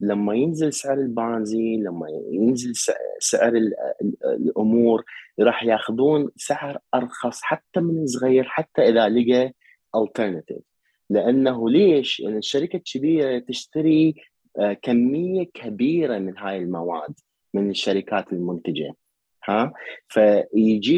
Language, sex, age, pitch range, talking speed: Arabic, male, 30-49, 100-130 Hz, 100 wpm